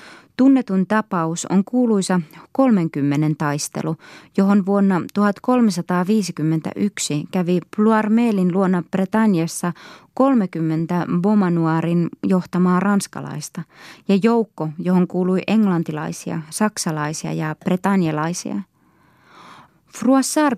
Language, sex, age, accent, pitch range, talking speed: Finnish, female, 20-39, native, 170-210 Hz, 75 wpm